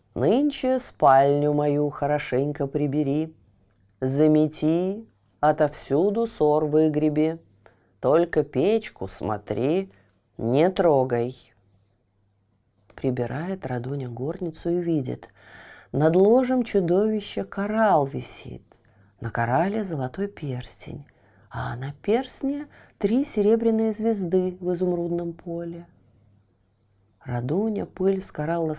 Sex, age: female, 30-49